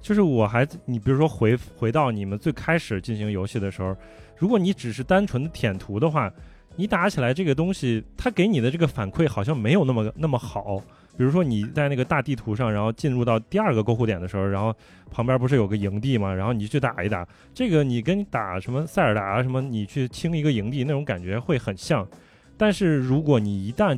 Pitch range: 105-140 Hz